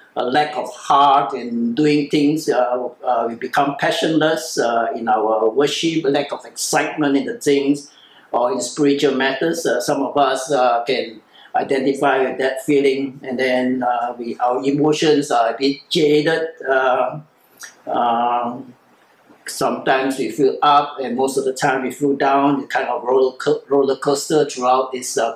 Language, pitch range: English, 135-150 Hz